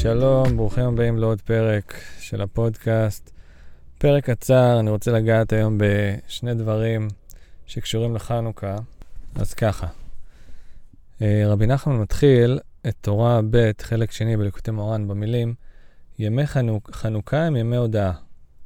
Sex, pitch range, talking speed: male, 105-120 Hz, 115 wpm